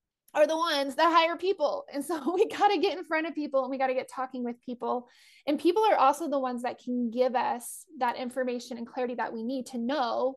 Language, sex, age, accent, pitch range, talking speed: English, female, 20-39, American, 250-300 Hz, 235 wpm